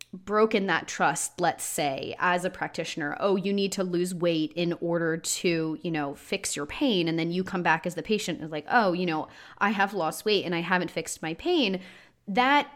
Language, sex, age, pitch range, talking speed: English, female, 30-49, 175-215 Hz, 215 wpm